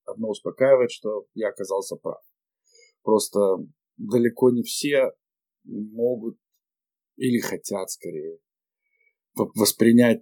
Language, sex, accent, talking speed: Russian, male, native, 90 wpm